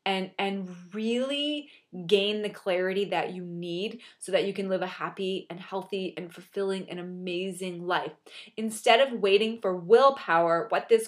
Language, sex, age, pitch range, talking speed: English, female, 20-39, 180-215 Hz, 160 wpm